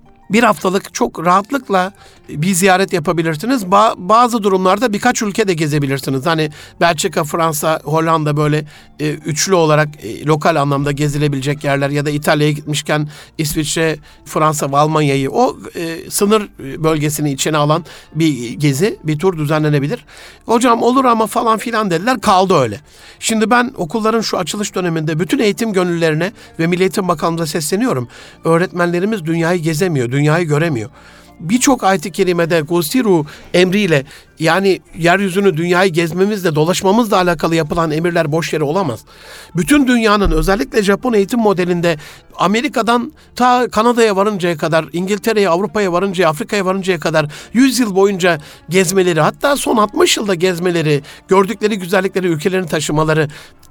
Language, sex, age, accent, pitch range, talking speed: Turkish, male, 60-79, native, 155-205 Hz, 130 wpm